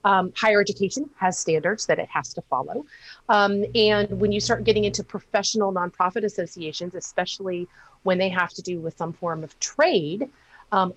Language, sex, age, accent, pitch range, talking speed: English, female, 40-59, American, 160-205 Hz, 170 wpm